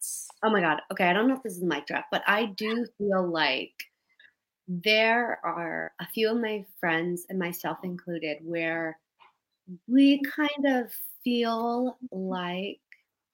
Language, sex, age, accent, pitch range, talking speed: English, female, 30-49, American, 180-235 Hz, 150 wpm